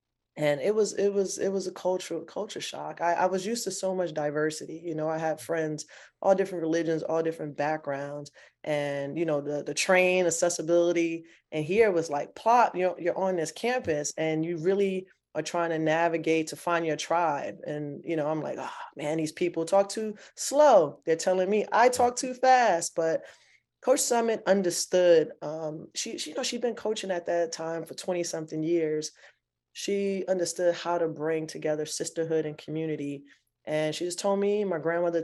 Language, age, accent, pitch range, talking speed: English, 20-39, American, 155-185 Hz, 190 wpm